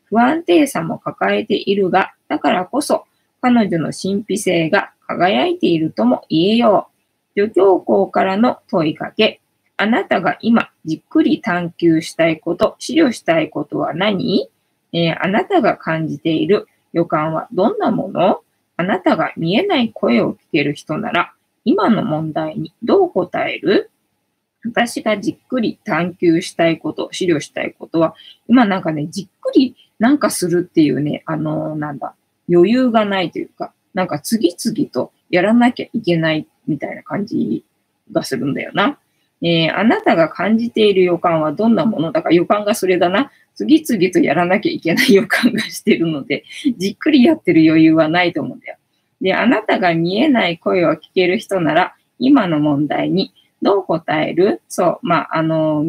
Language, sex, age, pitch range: Japanese, female, 20-39, 165-250 Hz